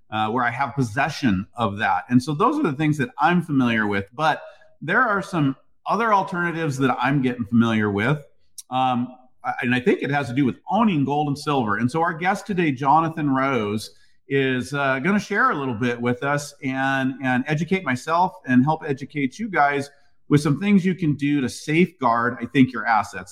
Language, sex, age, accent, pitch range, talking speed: English, male, 40-59, American, 115-145 Hz, 205 wpm